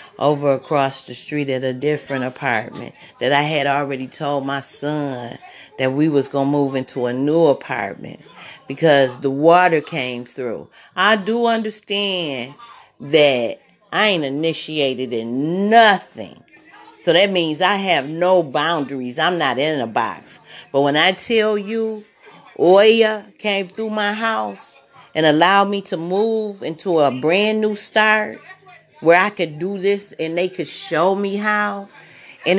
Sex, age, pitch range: female, 40-59, 145-200 Hz